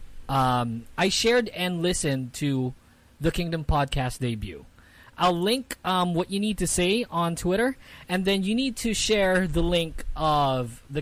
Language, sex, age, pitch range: English, male, 20-39, 130-190 Hz